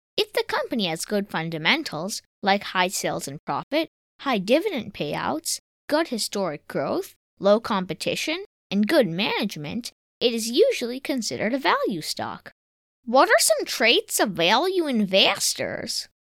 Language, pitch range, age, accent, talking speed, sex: English, 190-295 Hz, 20-39, American, 130 wpm, female